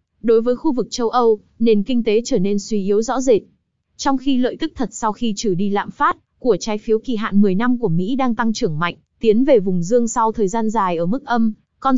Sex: female